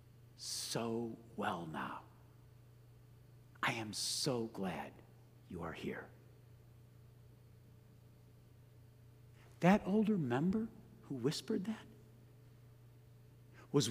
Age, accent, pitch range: 60-79, American, 120-155 Hz